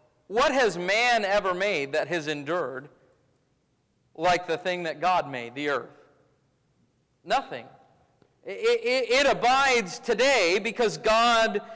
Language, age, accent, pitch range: English, 40-59, American, 200-270 Hz